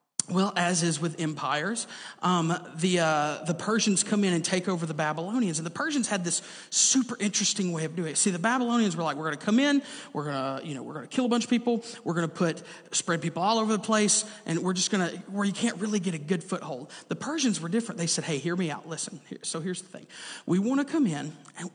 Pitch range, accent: 160-210 Hz, American